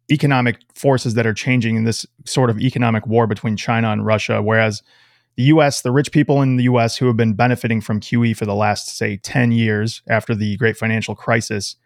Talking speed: 205 wpm